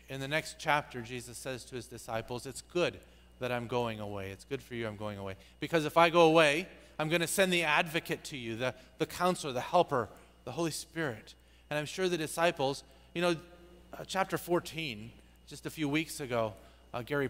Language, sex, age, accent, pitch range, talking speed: English, male, 40-59, American, 135-180 Hz, 210 wpm